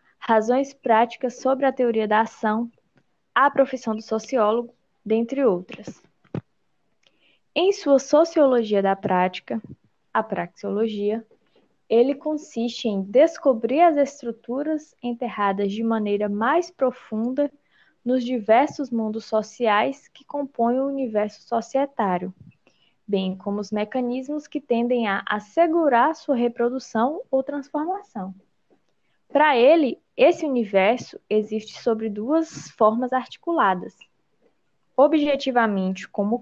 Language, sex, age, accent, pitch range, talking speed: Portuguese, female, 20-39, Brazilian, 220-285 Hz, 105 wpm